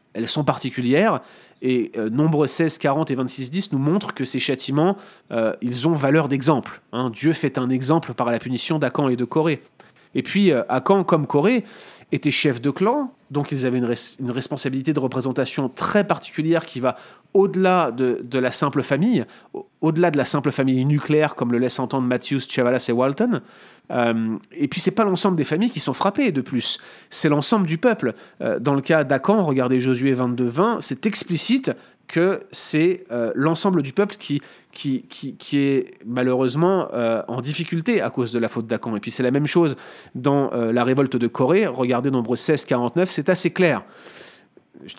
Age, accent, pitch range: 30-49, French, 130-170 Hz